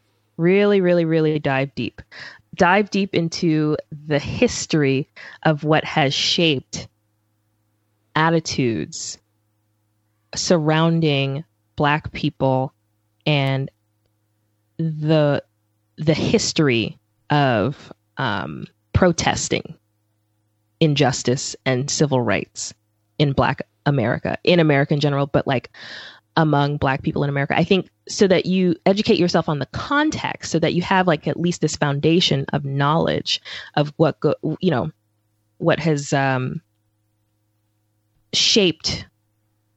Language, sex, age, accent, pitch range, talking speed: English, female, 20-39, American, 105-165 Hz, 110 wpm